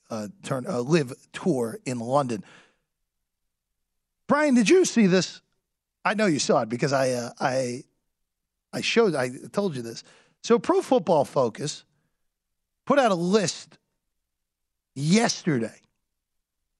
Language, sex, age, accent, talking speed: English, male, 40-59, American, 130 wpm